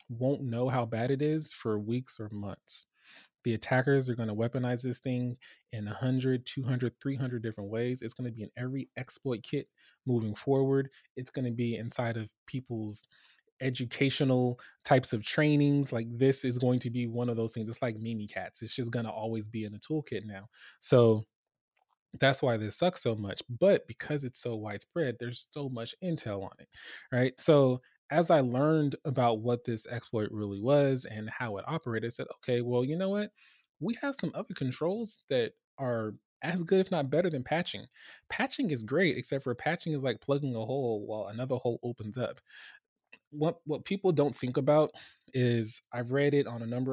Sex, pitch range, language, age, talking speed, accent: male, 115-145 Hz, English, 20-39, 195 wpm, American